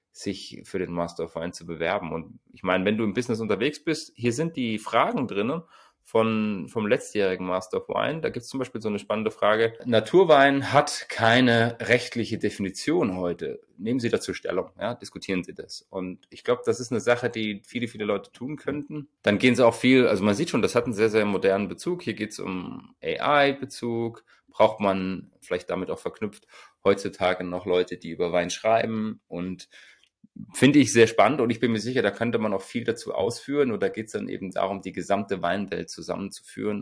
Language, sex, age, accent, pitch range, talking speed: German, male, 30-49, German, 90-120 Hz, 205 wpm